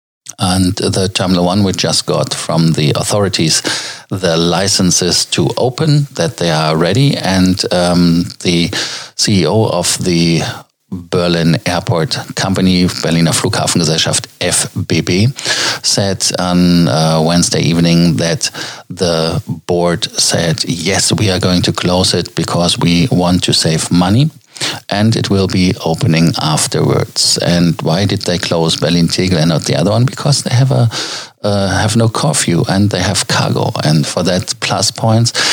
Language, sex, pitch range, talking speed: German, male, 90-110 Hz, 145 wpm